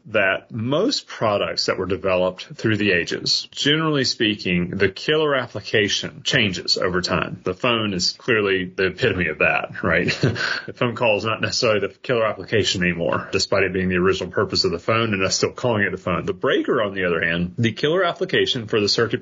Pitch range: 95-125 Hz